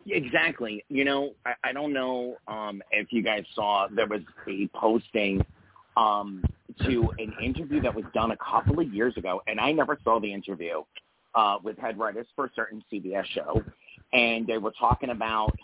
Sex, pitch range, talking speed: male, 105-125 Hz, 185 wpm